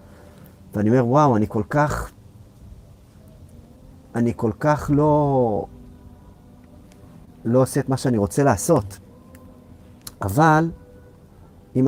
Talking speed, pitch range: 95 wpm, 95-130 Hz